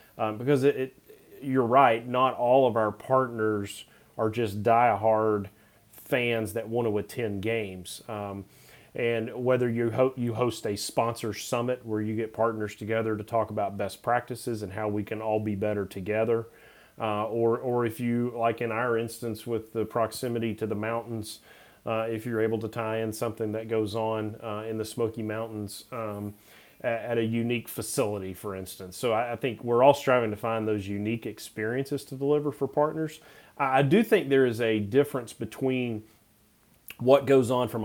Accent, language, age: American, English, 30-49